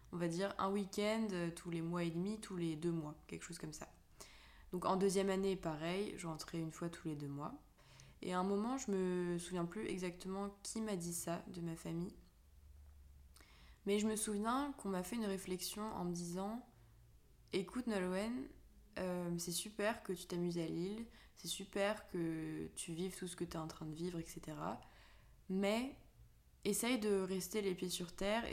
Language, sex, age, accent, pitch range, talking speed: French, female, 20-39, French, 170-200 Hz, 190 wpm